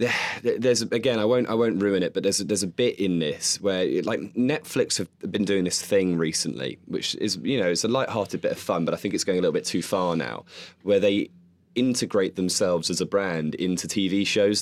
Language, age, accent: English, 20-39, British